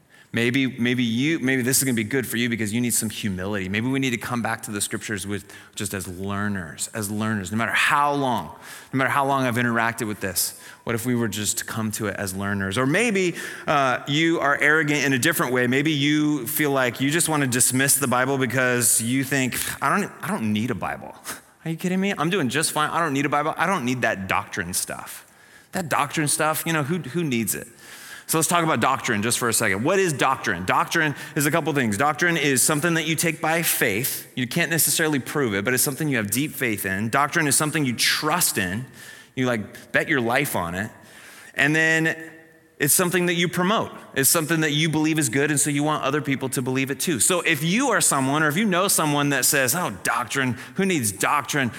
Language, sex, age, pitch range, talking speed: English, male, 30-49, 120-160 Hz, 235 wpm